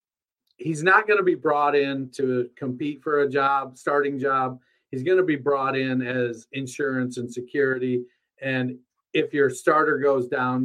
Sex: male